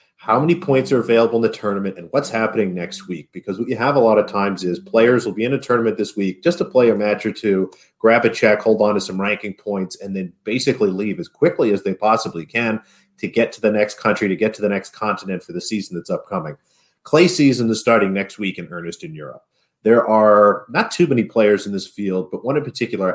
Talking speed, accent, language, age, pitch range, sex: 250 wpm, American, English, 40-59, 95-110 Hz, male